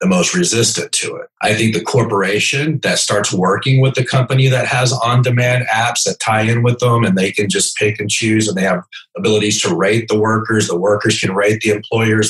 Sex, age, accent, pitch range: male, 40-59, American, 110-140 Hz